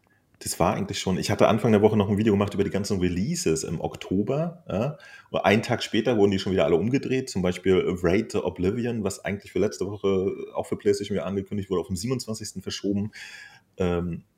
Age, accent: 30-49, German